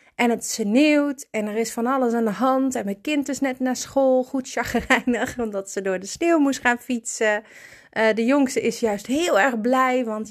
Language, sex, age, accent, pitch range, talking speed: Dutch, female, 30-49, Dutch, 210-255 Hz, 215 wpm